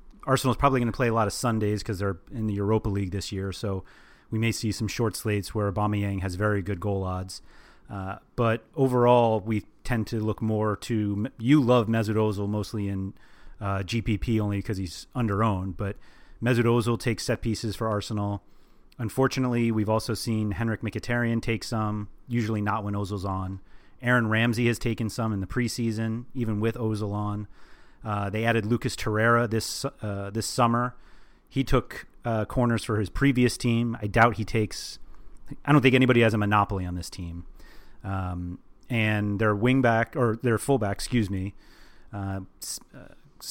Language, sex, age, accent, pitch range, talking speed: English, male, 30-49, American, 100-120 Hz, 175 wpm